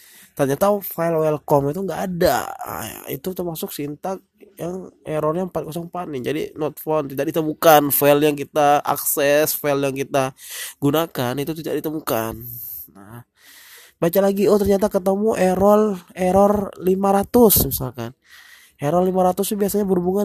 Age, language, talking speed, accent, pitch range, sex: 20-39, Indonesian, 130 wpm, native, 130-180 Hz, male